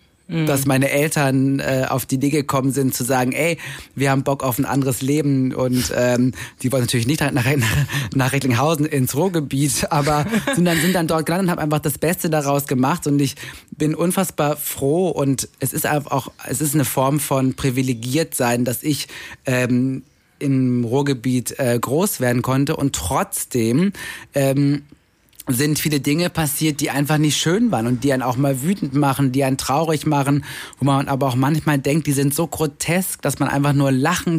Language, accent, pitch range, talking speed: German, German, 135-155 Hz, 190 wpm